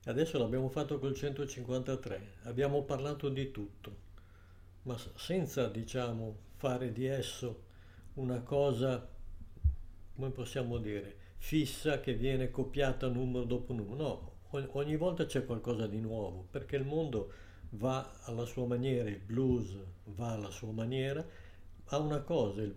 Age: 60-79